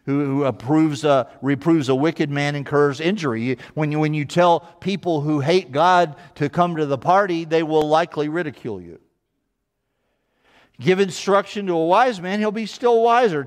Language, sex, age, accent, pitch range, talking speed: English, male, 50-69, American, 145-195 Hz, 170 wpm